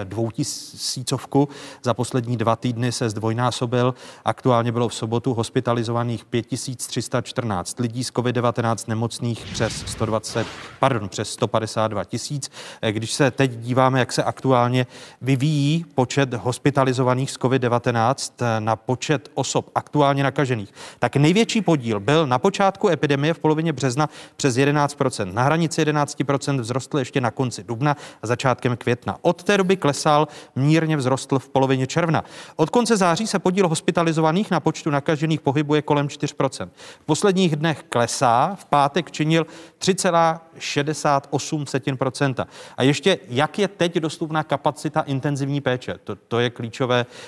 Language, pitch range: Czech, 120-155 Hz